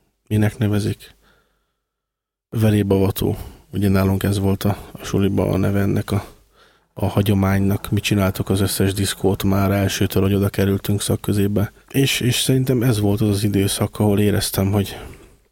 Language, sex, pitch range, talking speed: Hungarian, male, 95-110 Hz, 145 wpm